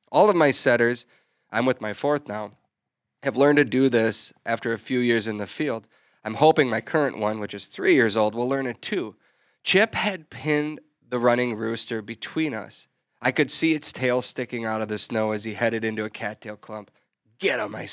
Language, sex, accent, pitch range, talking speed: English, male, American, 110-130 Hz, 210 wpm